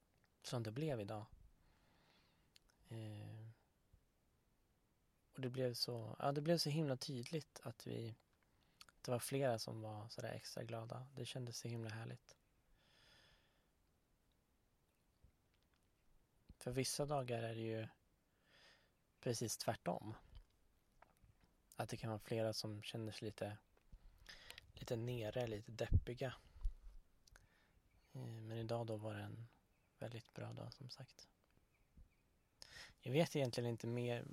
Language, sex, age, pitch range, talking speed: Swedish, male, 20-39, 105-125 Hz, 120 wpm